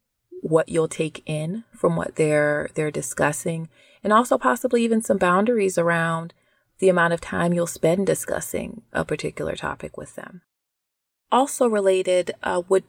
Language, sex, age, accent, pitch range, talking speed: English, female, 30-49, American, 150-190 Hz, 150 wpm